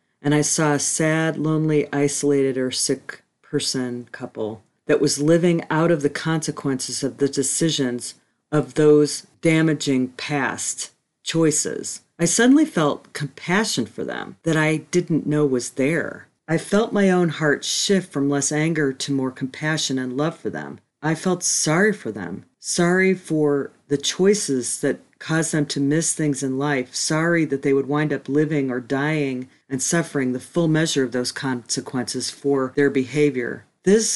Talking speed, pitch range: 160 wpm, 135-160 Hz